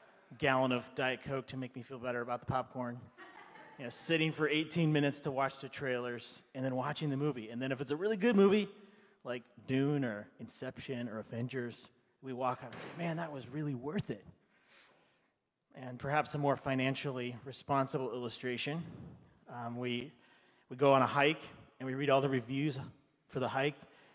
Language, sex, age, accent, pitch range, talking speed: English, male, 30-49, American, 125-150 Hz, 185 wpm